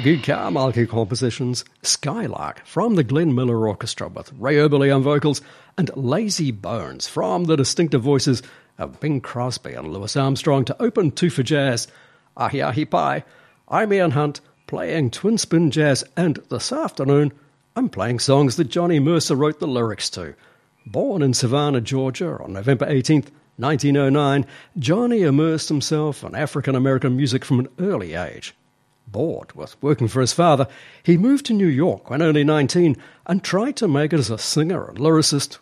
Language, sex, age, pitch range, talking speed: English, male, 60-79, 130-165 Hz, 165 wpm